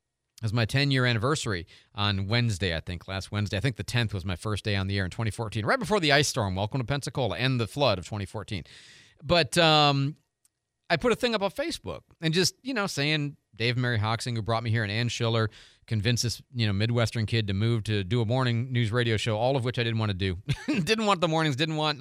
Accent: American